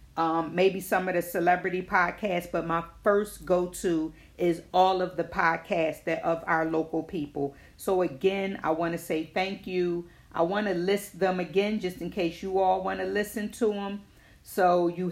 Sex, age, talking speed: female, 40-59, 185 wpm